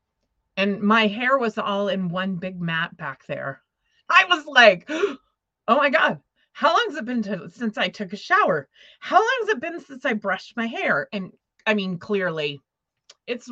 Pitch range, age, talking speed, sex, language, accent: 190-280 Hz, 30-49, 185 wpm, female, English, American